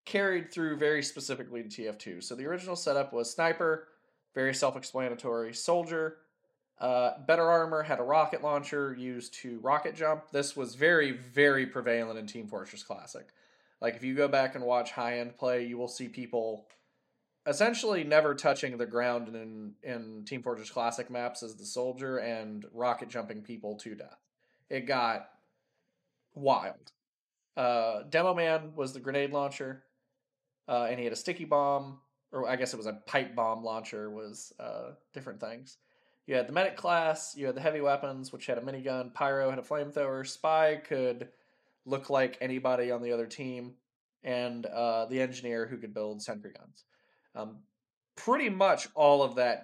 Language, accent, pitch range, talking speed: English, American, 120-140 Hz, 170 wpm